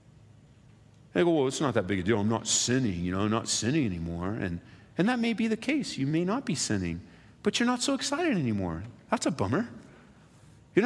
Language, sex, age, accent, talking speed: English, male, 50-69, American, 220 wpm